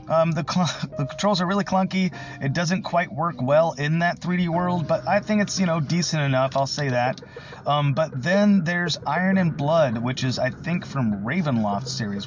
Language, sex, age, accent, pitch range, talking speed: English, male, 30-49, American, 130-165 Hz, 205 wpm